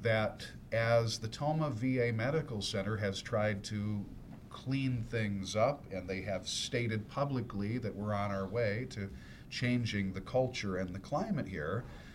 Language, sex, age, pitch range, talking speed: English, male, 50-69, 100-125 Hz, 155 wpm